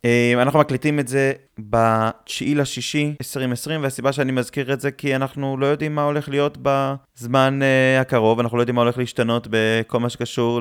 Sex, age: male, 20-39